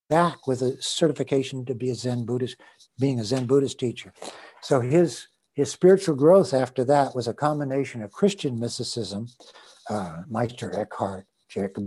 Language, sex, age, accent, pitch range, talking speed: English, male, 60-79, American, 120-150 Hz, 155 wpm